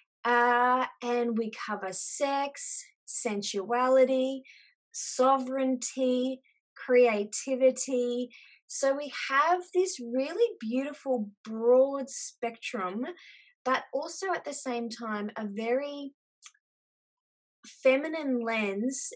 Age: 20-39